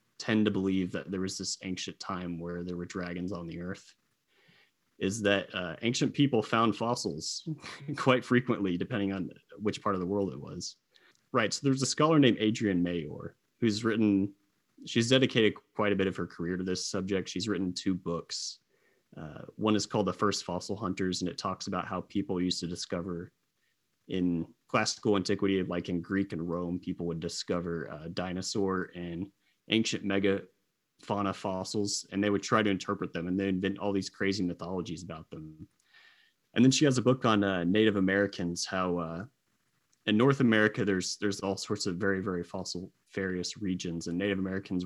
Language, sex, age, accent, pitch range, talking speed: English, male, 30-49, American, 90-105 Hz, 185 wpm